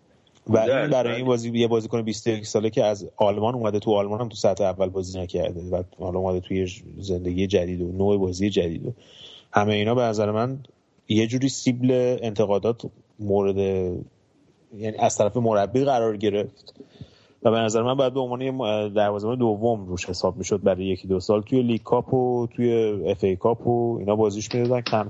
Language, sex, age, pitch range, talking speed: Persian, male, 30-49, 95-120 Hz, 170 wpm